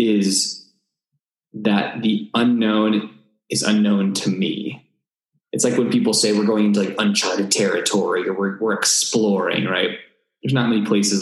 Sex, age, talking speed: male, 20-39, 150 wpm